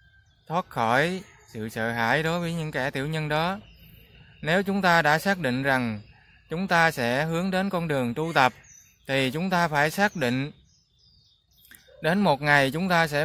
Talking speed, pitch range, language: 180 wpm, 135-180 Hz, Vietnamese